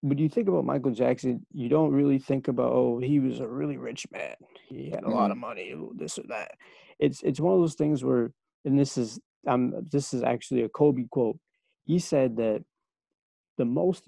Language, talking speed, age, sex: English, 210 wpm, 20-39, male